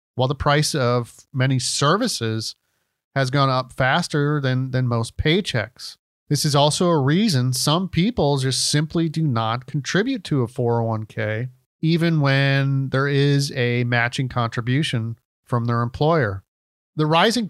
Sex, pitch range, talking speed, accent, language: male, 120-150 Hz, 140 wpm, American, English